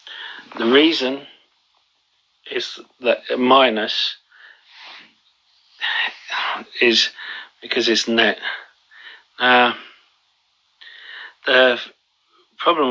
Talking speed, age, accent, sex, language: 55 wpm, 40-59, British, male, English